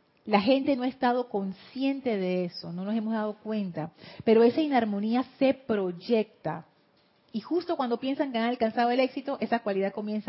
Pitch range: 190-250 Hz